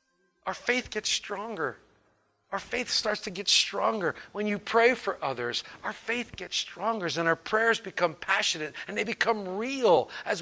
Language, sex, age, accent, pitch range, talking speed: English, male, 50-69, American, 165-230 Hz, 165 wpm